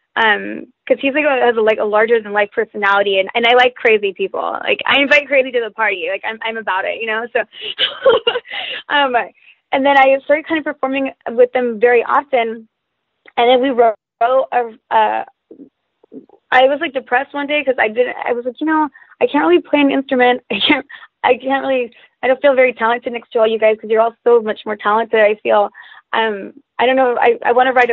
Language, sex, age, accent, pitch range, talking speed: English, female, 20-39, American, 225-275 Hz, 220 wpm